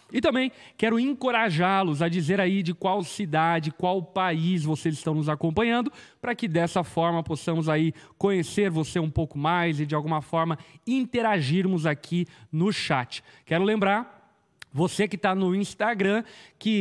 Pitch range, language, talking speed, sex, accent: 160-205 Hz, Portuguese, 155 wpm, male, Brazilian